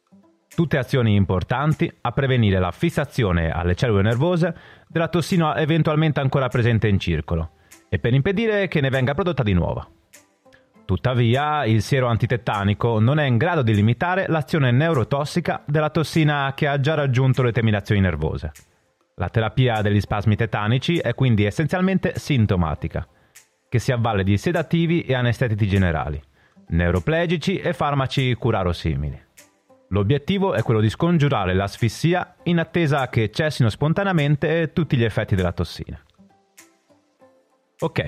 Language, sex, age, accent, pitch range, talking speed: Italian, male, 30-49, native, 100-160 Hz, 135 wpm